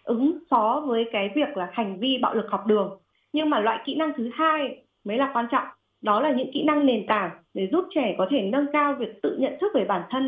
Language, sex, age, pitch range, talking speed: Vietnamese, female, 20-39, 195-270 Hz, 255 wpm